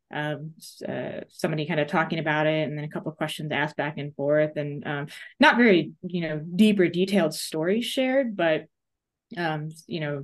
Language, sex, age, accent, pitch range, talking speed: English, female, 20-39, American, 150-180 Hz, 190 wpm